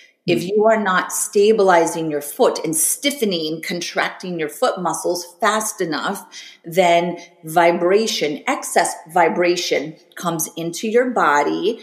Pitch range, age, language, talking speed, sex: 170-210 Hz, 30-49, English, 115 wpm, female